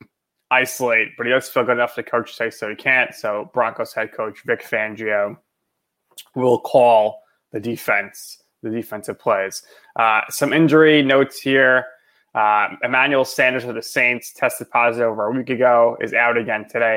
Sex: male